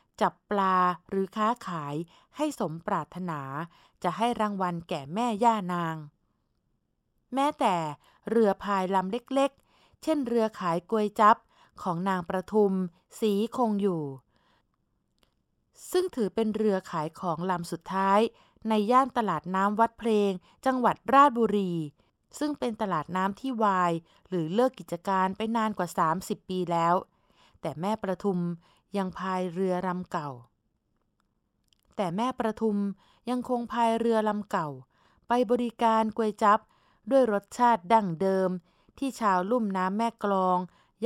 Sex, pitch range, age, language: female, 175-225 Hz, 20-39, Thai